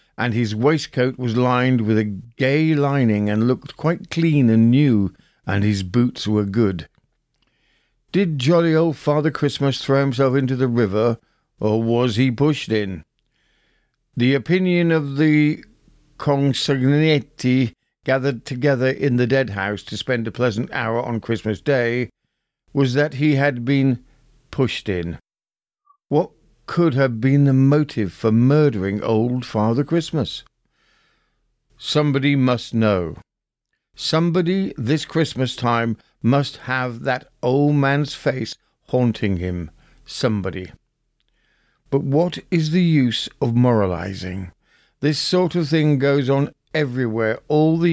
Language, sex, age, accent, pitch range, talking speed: English, male, 50-69, British, 115-150 Hz, 130 wpm